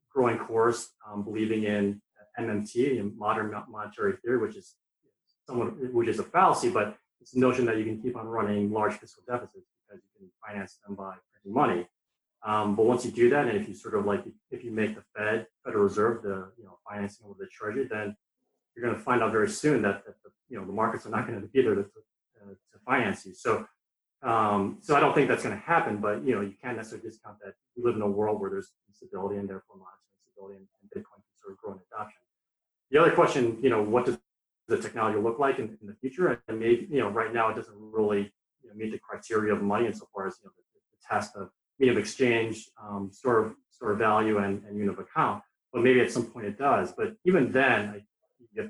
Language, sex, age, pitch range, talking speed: English, male, 30-49, 105-125 Hz, 240 wpm